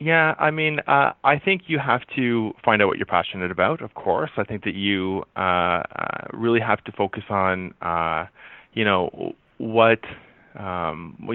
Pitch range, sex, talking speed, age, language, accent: 95-120 Hz, male, 170 wpm, 20-39, English, American